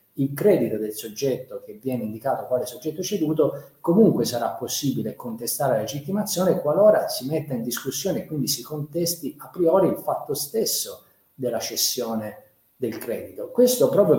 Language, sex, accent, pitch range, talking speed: Italian, male, native, 125-170 Hz, 150 wpm